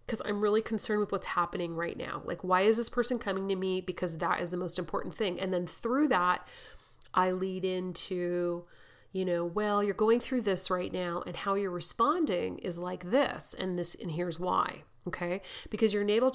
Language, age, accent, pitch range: English, 30-49, American, 185-235 Hz